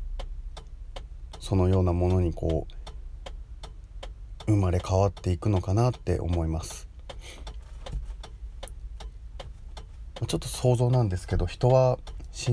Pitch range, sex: 80-105 Hz, male